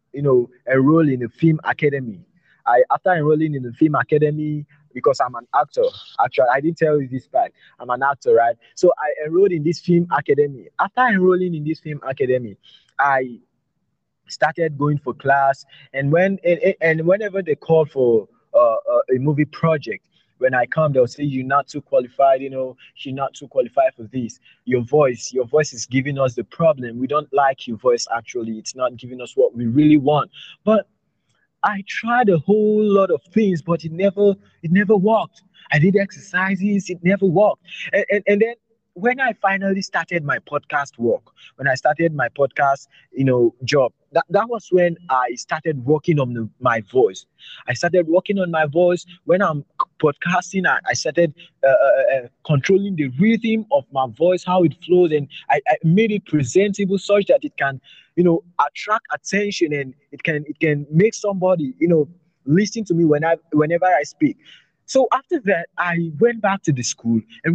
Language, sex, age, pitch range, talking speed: English, male, 20-39, 135-190 Hz, 190 wpm